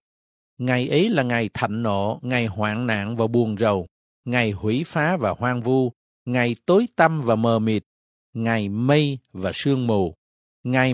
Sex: male